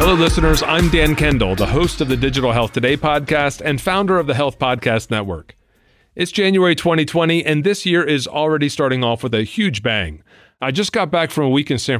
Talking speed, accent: 215 wpm, American